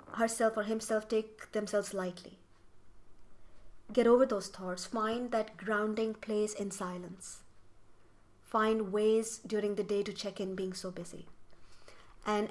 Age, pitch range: 30-49, 190-225 Hz